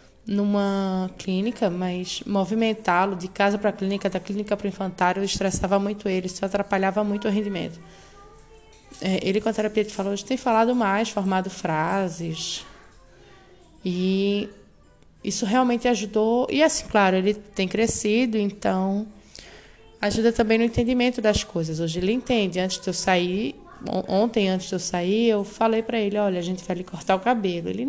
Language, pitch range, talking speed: Portuguese, 185-225 Hz, 165 wpm